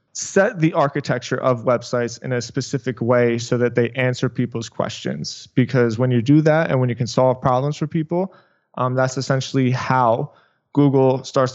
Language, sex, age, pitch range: English, male, 20-39, 125-145 Hz